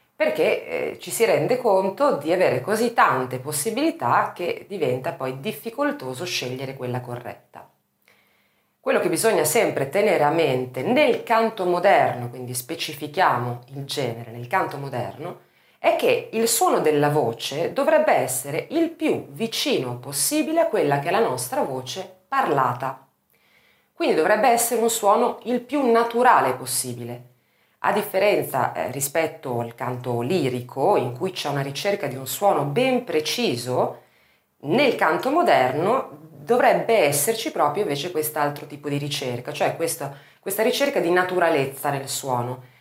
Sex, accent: female, native